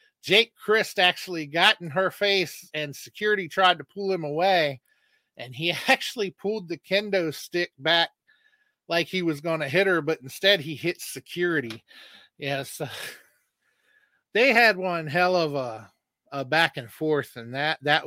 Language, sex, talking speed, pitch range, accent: English, male, 160 wpm, 145-185 Hz, American